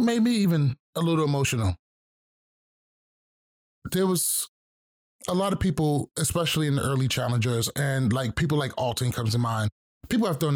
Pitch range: 120-160 Hz